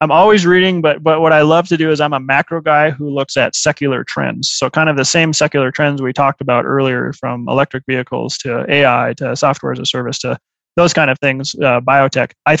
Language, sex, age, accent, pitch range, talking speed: English, male, 20-39, American, 130-150 Hz, 235 wpm